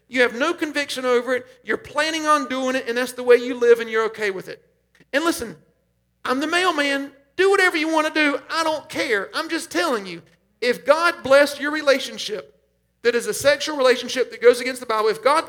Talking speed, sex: 220 wpm, male